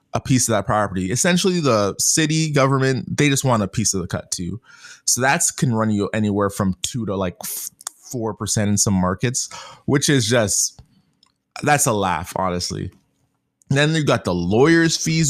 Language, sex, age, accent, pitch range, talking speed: English, male, 20-39, American, 105-155 Hz, 185 wpm